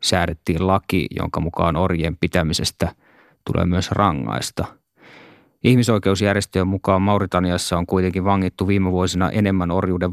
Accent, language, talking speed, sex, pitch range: native, Finnish, 115 wpm, male, 90-105 Hz